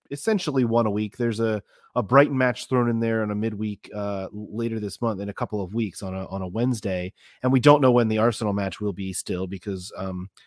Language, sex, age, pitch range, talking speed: English, male, 30-49, 105-135 Hz, 240 wpm